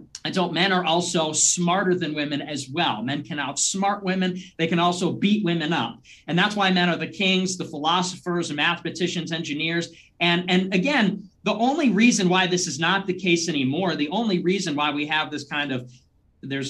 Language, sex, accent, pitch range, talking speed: English, male, American, 160-200 Hz, 200 wpm